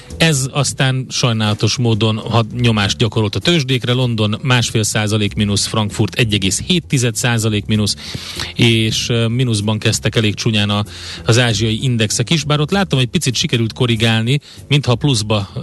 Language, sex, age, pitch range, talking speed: Hungarian, male, 30-49, 110-130 Hz, 140 wpm